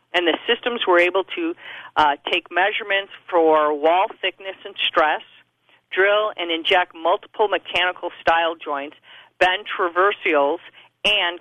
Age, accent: 50-69, American